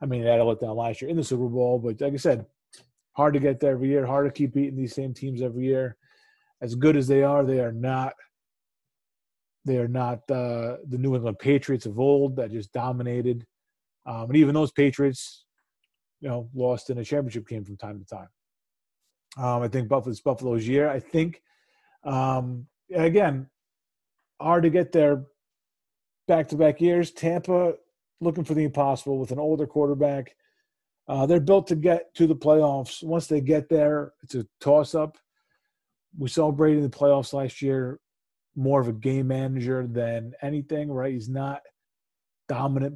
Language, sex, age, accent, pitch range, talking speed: English, male, 30-49, American, 125-150 Hz, 180 wpm